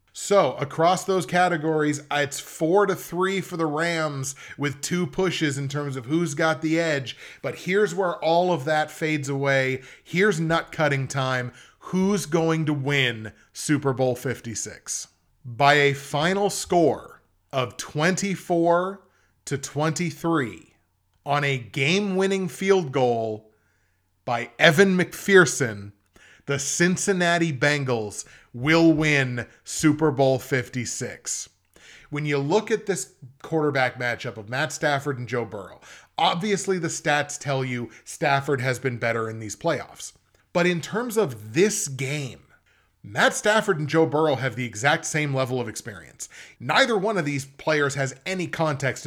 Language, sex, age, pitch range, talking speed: English, male, 30-49, 130-170 Hz, 140 wpm